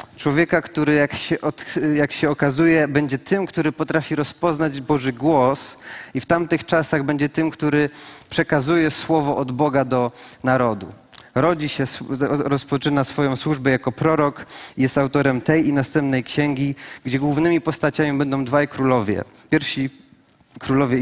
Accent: native